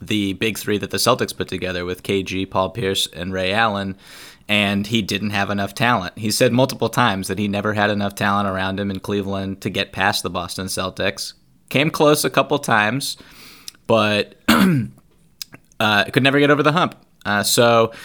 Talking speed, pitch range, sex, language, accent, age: 185 wpm, 100-120 Hz, male, English, American, 20-39